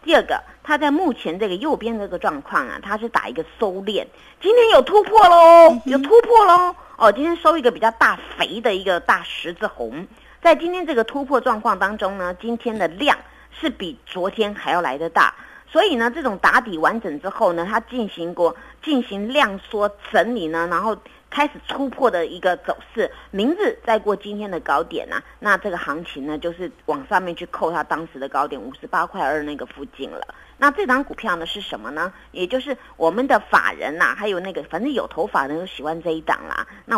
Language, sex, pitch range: Chinese, female, 175-250 Hz